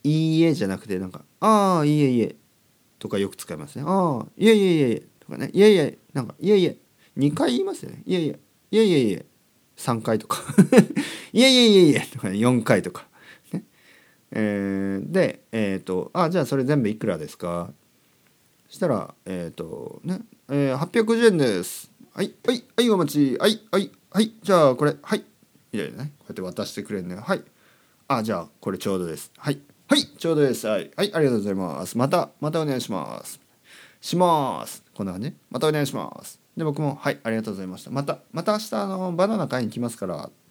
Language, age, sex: Japanese, 40-59, male